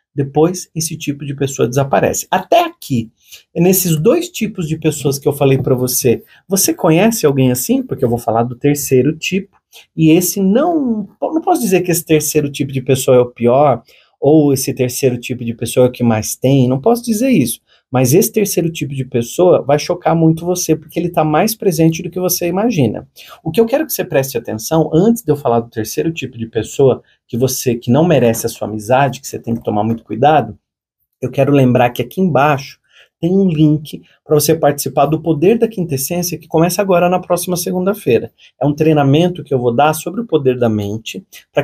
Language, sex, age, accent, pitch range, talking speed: Portuguese, male, 40-59, Brazilian, 130-180 Hz, 210 wpm